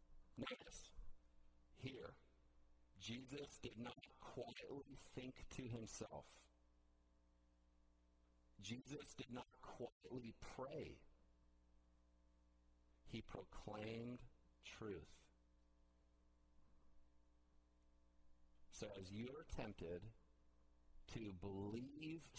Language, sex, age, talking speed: English, male, 50-69, 65 wpm